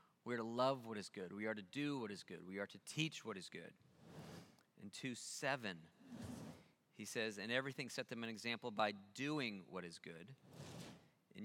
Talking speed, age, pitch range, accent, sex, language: 195 wpm, 30-49, 100-135 Hz, American, male, English